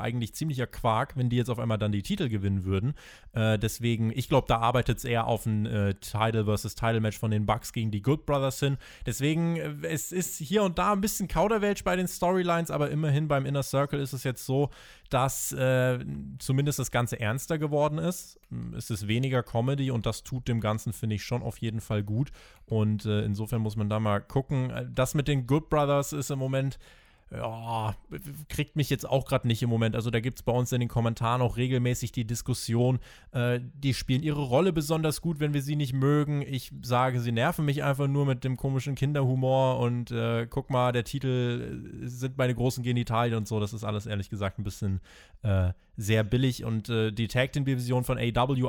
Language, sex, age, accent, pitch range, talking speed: German, male, 20-39, German, 115-140 Hz, 210 wpm